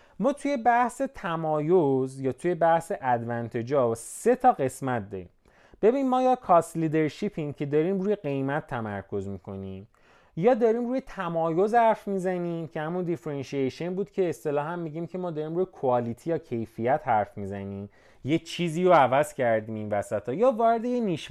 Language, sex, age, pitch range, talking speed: Persian, male, 30-49, 115-185 Hz, 165 wpm